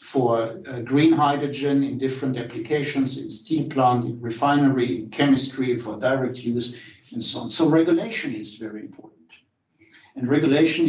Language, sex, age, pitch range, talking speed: English, male, 60-79, 120-145 Hz, 150 wpm